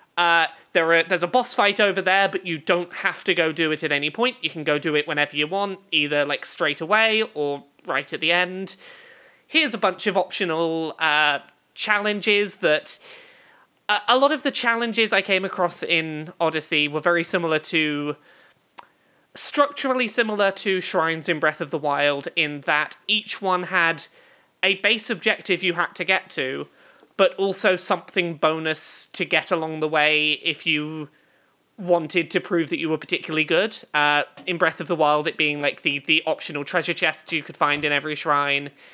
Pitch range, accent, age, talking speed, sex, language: 155-205 Hz, British, 30-49, 185 wpm, male, English